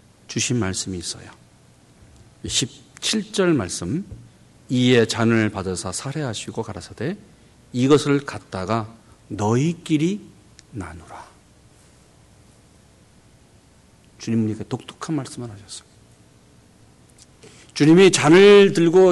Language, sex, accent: Korean, male, native